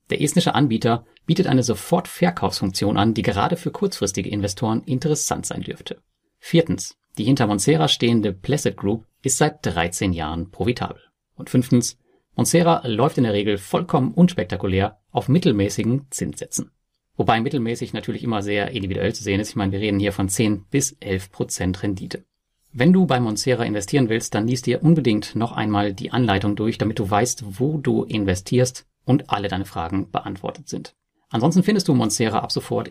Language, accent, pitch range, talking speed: German, German, 100-130 Hz, 170 wpm